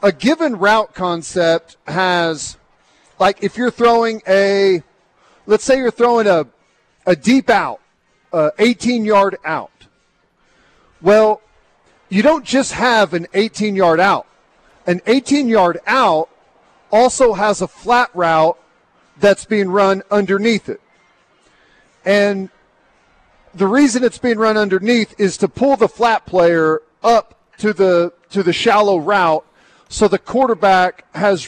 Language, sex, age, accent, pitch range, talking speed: English, male, 40-59, American, 180-225 Hz, 130 wpm